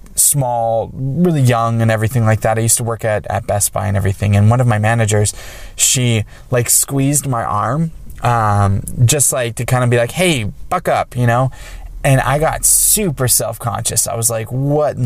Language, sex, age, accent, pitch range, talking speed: English, male, 20-39, American, 105-125 Hz, 200 wpm